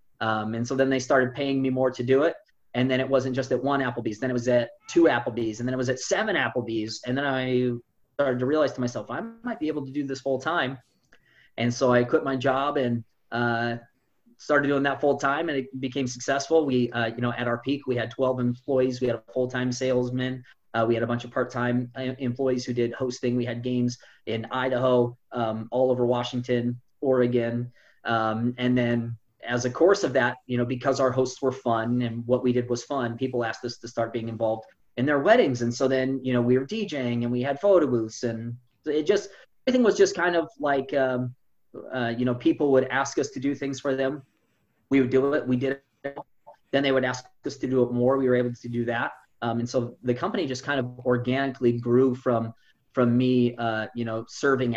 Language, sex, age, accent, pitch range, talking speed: English, male, 30-49, American, 120-135 Hz, 230 wpm